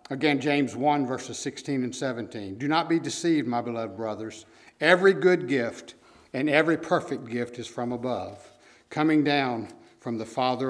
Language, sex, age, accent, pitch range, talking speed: English, male, 60-79, American, 115-150 Hz, 165 wpm